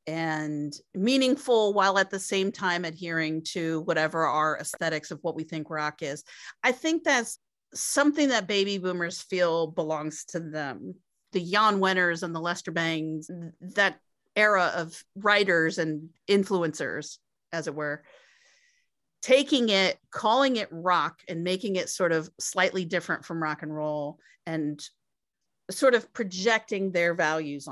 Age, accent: 40-59, American